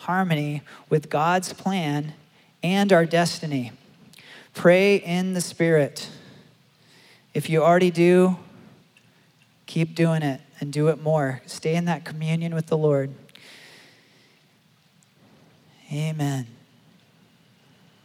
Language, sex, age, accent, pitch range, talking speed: English, male, 40-59, American, 140-170 Hz, 100 wpm